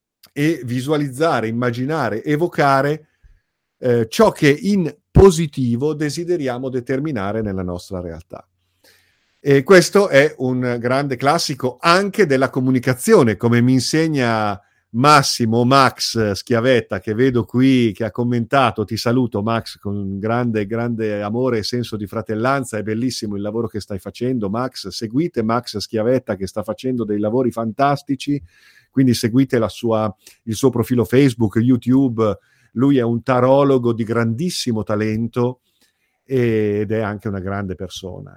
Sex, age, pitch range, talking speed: male, 50-69, 105-130 Hz, 130 wpm